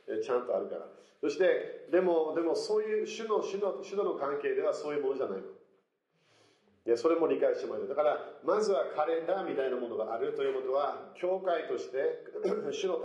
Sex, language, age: male, Japanese, 40-59